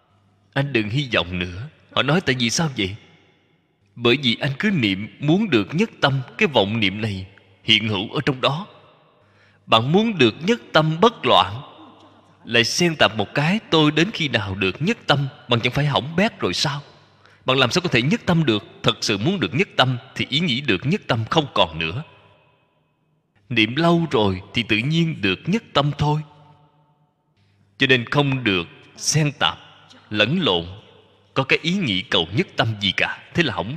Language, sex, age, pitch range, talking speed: Vietnamese, male, 20-39, 105-155 Hz, 190 wpm